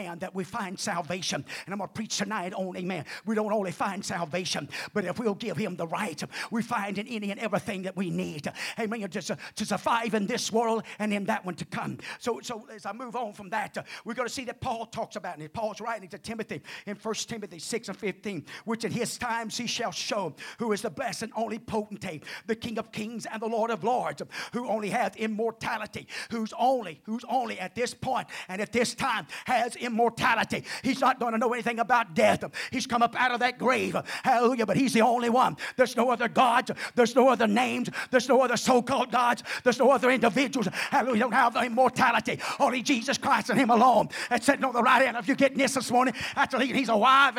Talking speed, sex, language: 225 wpm, male, English